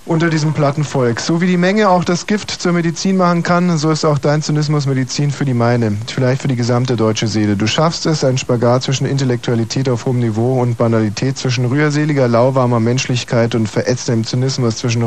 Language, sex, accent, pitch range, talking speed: German, male, German, 120-150 Hz, 200 wpm